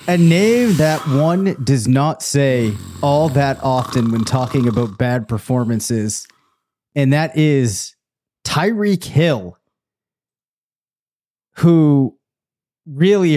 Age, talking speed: 30-49, 100 wpm